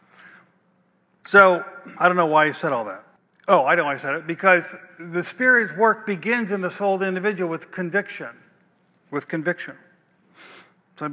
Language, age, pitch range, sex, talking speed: English, 50-69, 175-210 Hz, male, 180 wpm